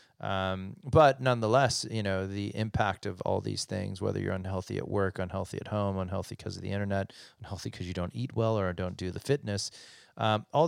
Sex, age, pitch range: male, 30-49, 100-125 Hz